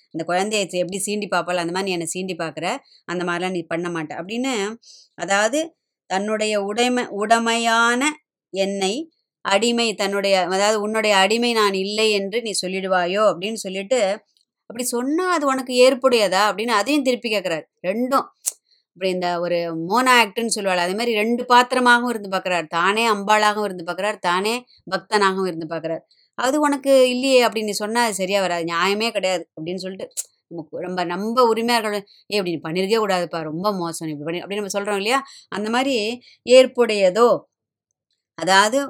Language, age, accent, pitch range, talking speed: Tamil, 20-39, native, 185-230 Hz, 145 wpm